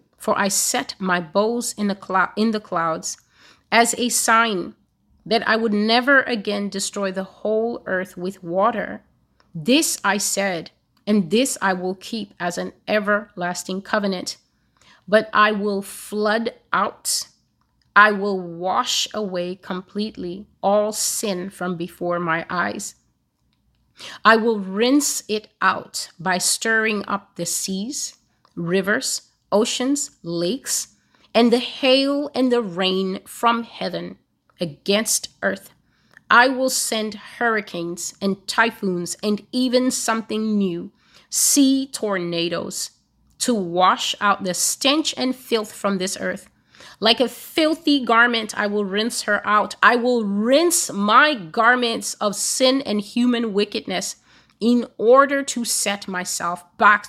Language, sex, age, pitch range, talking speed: English, female, 30-49, 190-235 Hz, 125 wpm